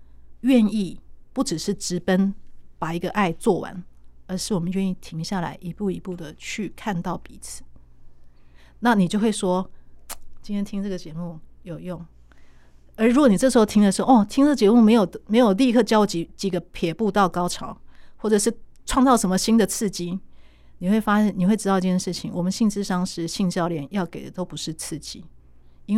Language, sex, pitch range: Chinese, female, 170-210 Hz